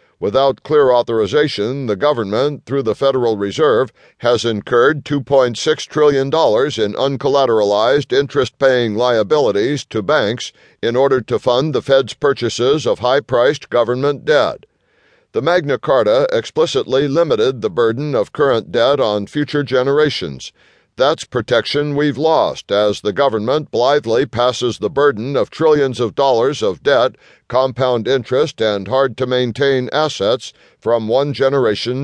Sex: male